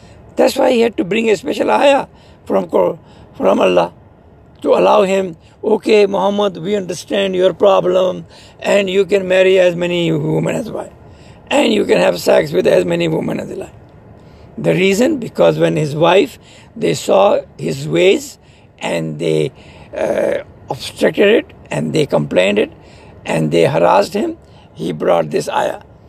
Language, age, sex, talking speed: English, 60-79, male, 155 wpm